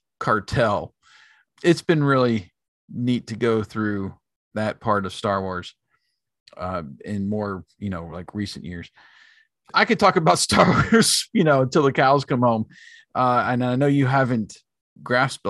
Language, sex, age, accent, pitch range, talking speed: English, male, 40-59, American, 110-145 Hz, 160 wpm